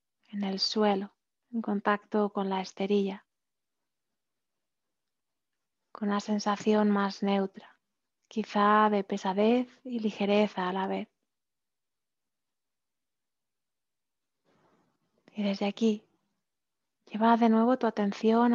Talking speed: 95 wpm